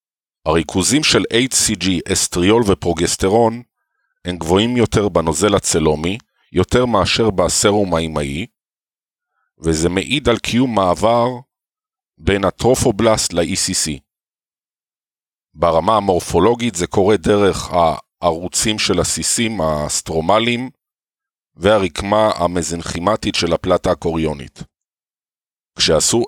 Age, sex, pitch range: 50-69, male, 85-115 Hz